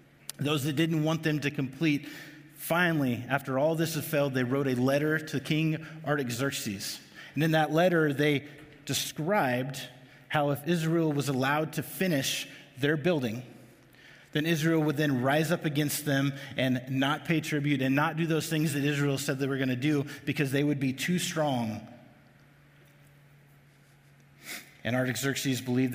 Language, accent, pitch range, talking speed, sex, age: English, American, 130-150 Hz, 155 wpm, male, 30-49